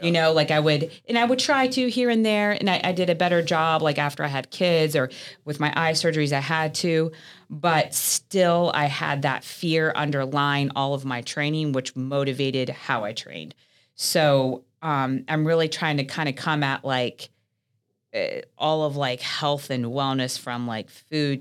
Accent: American